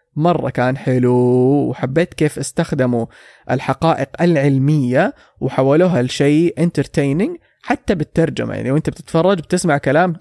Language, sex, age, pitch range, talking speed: English, male, 20-39, 130-165 Hz, 105 wpm